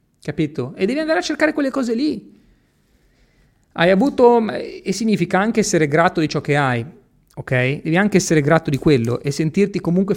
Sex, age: male, 30-49